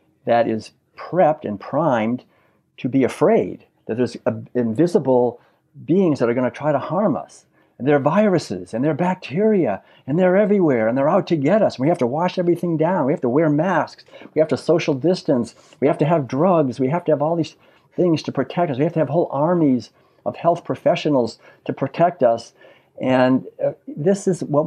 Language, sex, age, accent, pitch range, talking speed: English, male, 60-79, American, 125-160 Hz, 205 wpm